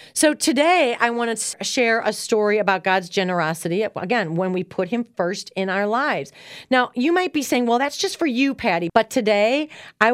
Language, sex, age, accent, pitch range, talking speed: English, female, 40-59, American, 195-270 Hz, 200 wpm